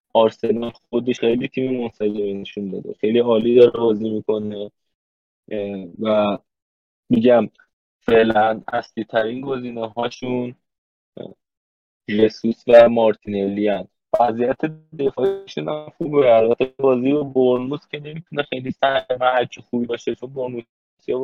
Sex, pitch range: male, 110-130 Hz